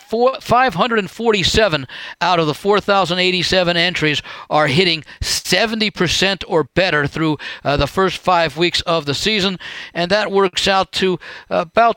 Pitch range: 155-195 Hz